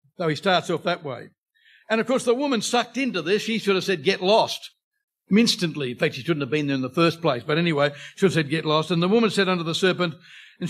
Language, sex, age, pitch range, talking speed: English, male, 60-79, 170-225 Hz, 265 wpm